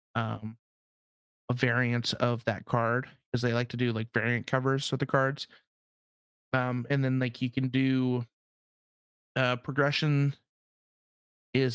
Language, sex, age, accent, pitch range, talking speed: English, male, 30-49, American, 115-130 Hz, 140 wpm